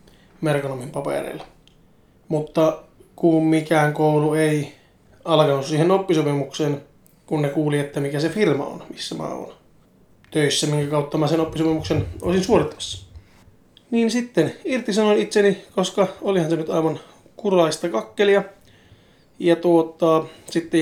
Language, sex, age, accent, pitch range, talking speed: Finnish, male, 20-39, native, 145-170 Hz, 125 wpm